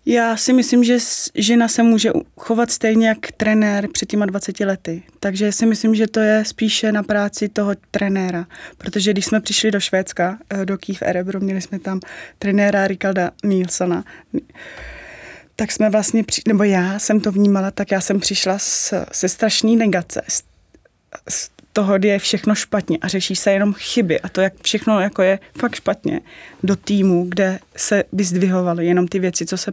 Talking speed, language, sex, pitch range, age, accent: 175 wpm, Czech, female, 185-205 Hz, 20-39, native